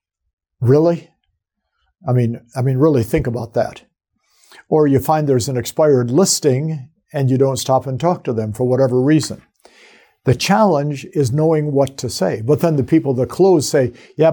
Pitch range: 125-155 Hz